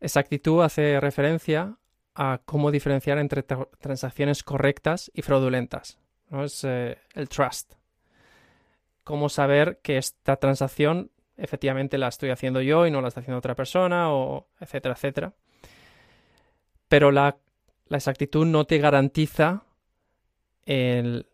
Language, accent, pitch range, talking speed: Spanish, Spanish, 135-150 Hz, 125 wpm